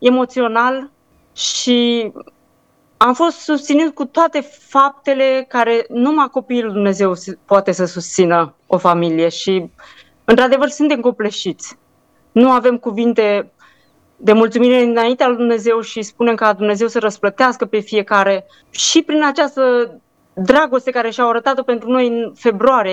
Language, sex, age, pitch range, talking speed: Romanian, female, 20-39, 215-260 Hz, 125 wpm